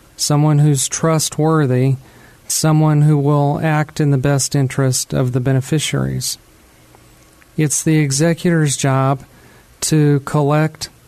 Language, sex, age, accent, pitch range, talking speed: English, male, 40-59, American, 135-150 Hz, 110 wpm